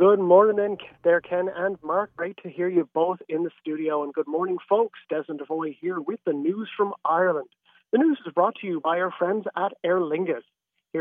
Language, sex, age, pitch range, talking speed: English, male, 40-59, 160-210 Hz, 215 wpm